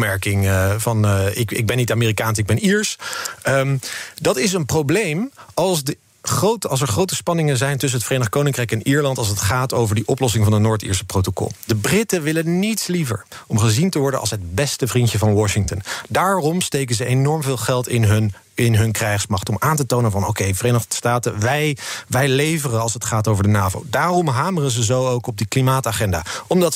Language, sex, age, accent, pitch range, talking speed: Dutch, male, 40-59, Dutch, 110-140 Hz, 205 wpm